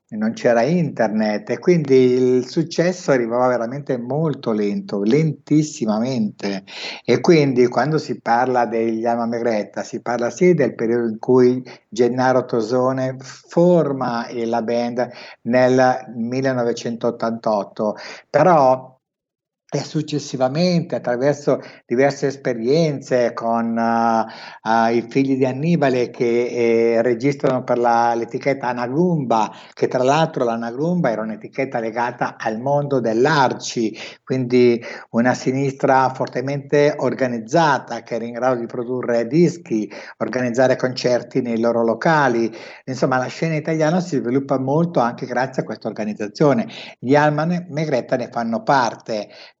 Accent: native